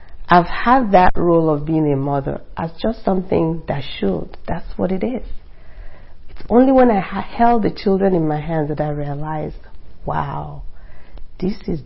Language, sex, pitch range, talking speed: English, female, 130-200 Hz, 165 wpm